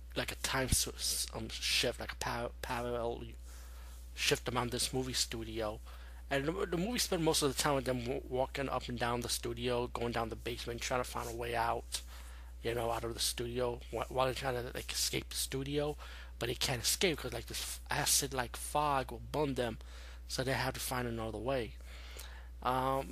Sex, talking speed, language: male, 190 wpm, English